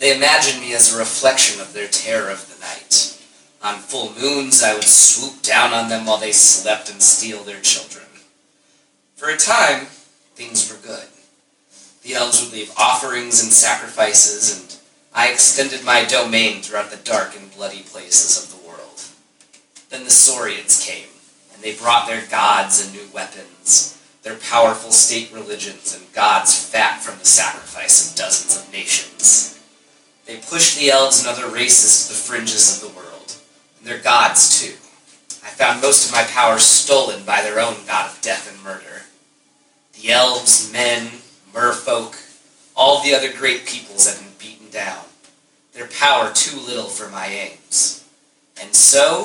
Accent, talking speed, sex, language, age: American, 165 wpm, male, English, 30-49